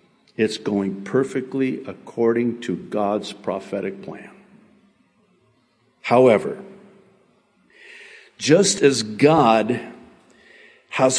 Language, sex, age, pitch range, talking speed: English, male, 50-69, 125-185 Hz, 70 wpm